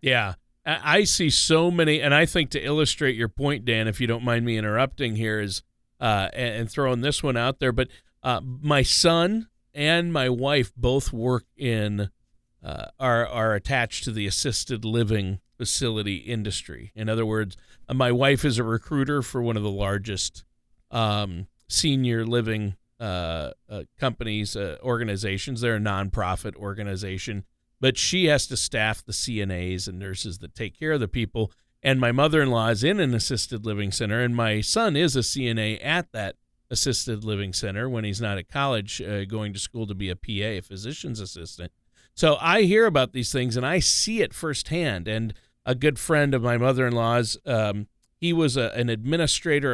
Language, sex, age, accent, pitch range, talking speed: English, male, 40-59, American, 105-140 Hz, 175 wpm